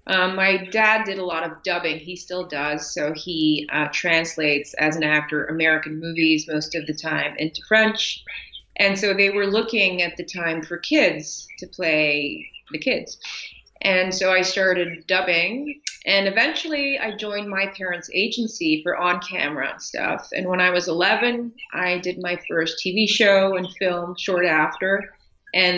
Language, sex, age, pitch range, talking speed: English, female, 30-49, 165-205 Hz, 170 wpm